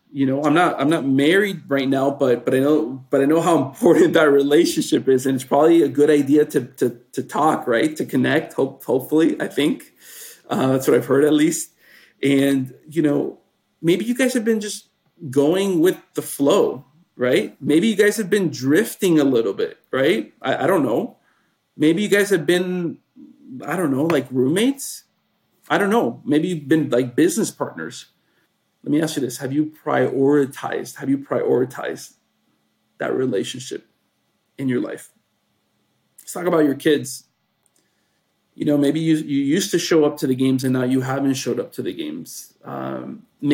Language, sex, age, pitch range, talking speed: English, male, 40-59, 135-175 Hz, 185 wpm